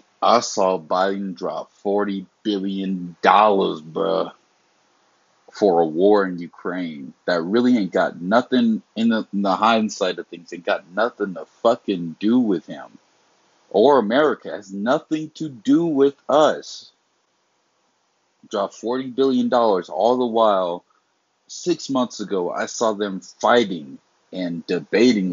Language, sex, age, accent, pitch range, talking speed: English, male, 30-49, American, 95-115 Hz, 130 wpm